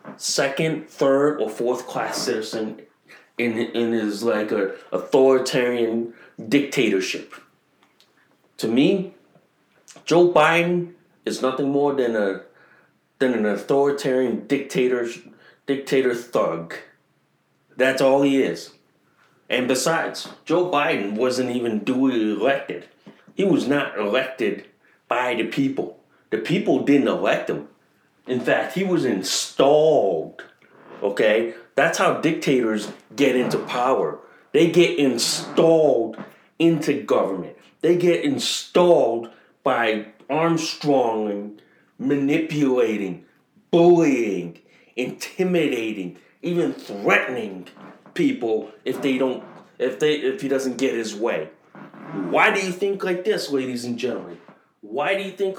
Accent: American